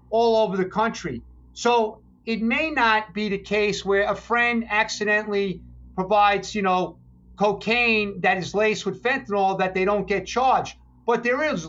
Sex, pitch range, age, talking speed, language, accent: male, 185-220 Hz, 50-69, 165 wpm, English, American